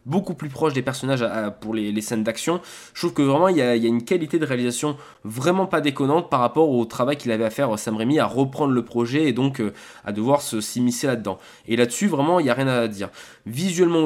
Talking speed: 260 wpm